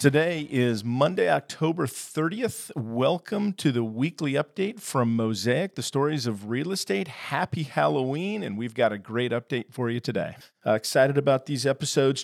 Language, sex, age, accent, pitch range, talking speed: English, male, 40-59, American, 110-140 Hz, 160 wpm